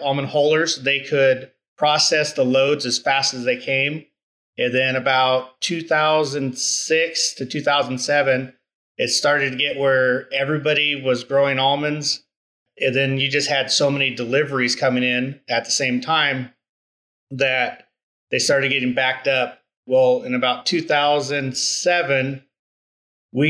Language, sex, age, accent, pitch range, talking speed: English, male, 30-49, American, 125-145 Hz, 135 wpm